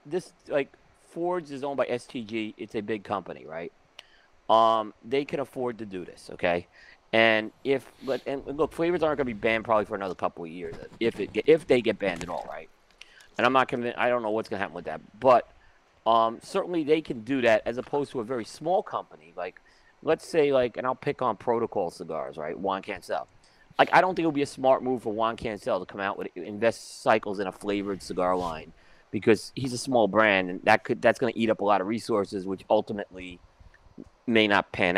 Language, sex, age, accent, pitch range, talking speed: English, male, 30-49, American, 100-140 Hz, 225 wpm